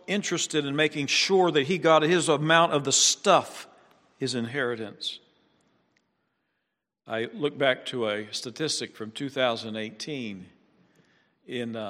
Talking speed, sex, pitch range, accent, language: 110 wpm, male, 125-155 Hz, American, English